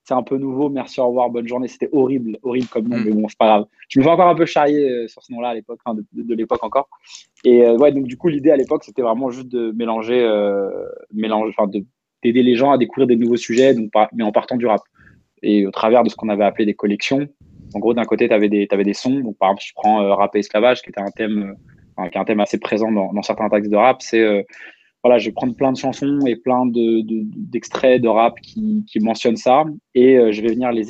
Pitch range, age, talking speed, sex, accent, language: 105-125 Hz, 20-39, 270 wpm, male, French, French